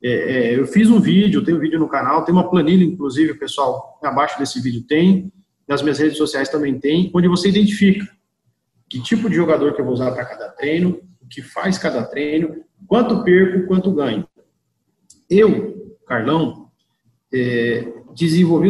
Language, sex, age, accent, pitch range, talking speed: Portuguese, male, 40-59, Brazilian, 150-195 Hz, 170 wpm